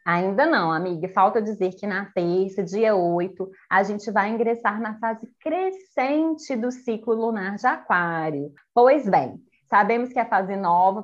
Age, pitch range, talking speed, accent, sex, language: 20-39, 195-255 Hz, 160 wpm, Brazilian, female, Portuguese